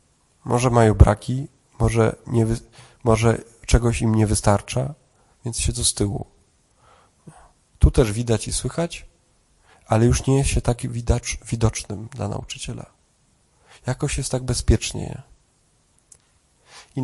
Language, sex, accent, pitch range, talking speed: Polish, male, native, 110-130 Hz, 115 wpm